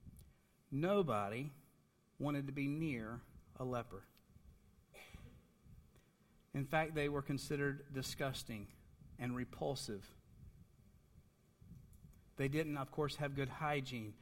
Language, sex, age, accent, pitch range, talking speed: English, male, 50-69, American, 145-205 Hz, 95 wpm